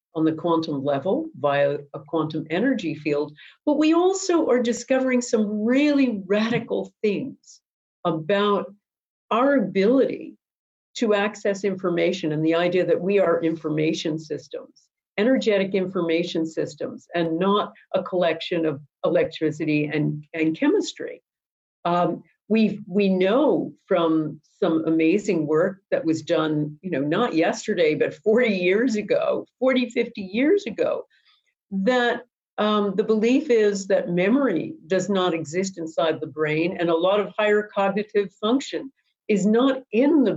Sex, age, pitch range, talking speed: female, 50-69, 165-235 Hz, 135 wpm